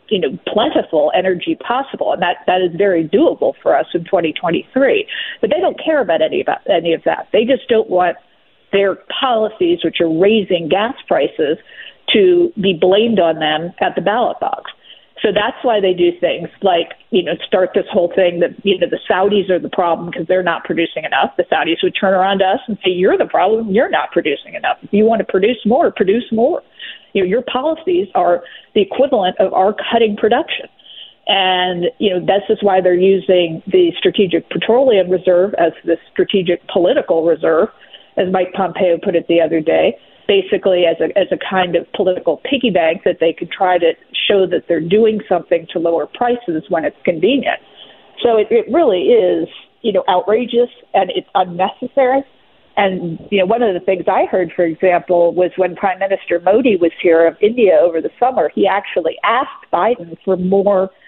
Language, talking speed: English, 190 wpm